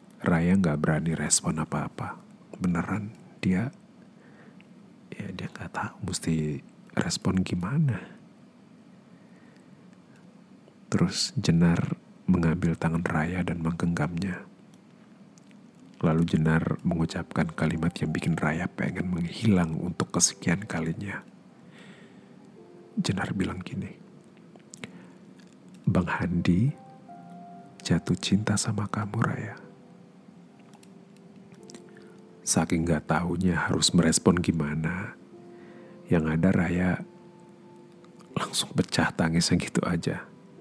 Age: 50-69